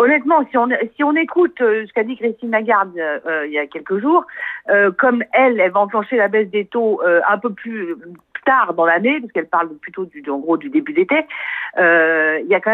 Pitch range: 200-270 Hz